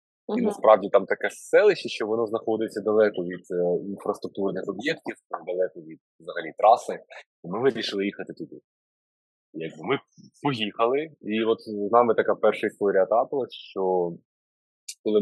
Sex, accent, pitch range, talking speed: male, native, 95-120 Hz, 135 wpm